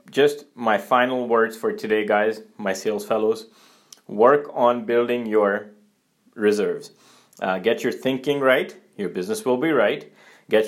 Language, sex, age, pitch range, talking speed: English, male, 30-49, 105-125 Hz, 145 wpm